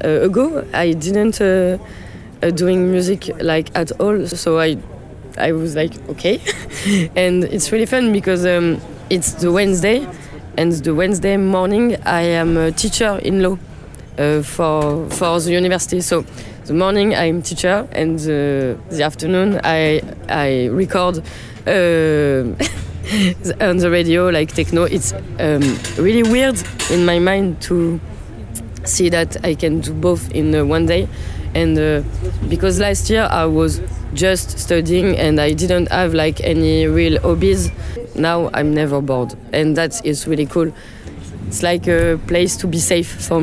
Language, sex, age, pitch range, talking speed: Hungarian, female, 20-39, 140-180 Hz, 155 wpm